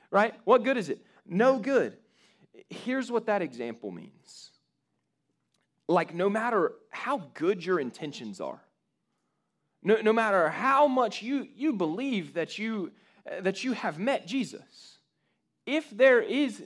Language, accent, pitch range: English, American, 170-240 Hz